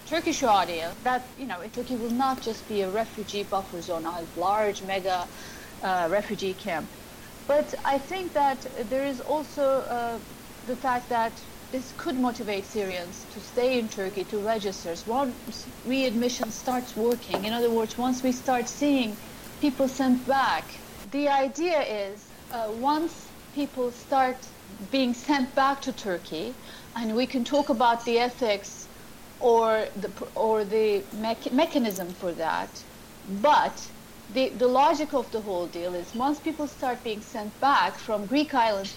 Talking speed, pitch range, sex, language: 155 wpm, 210-265 Hz, female, English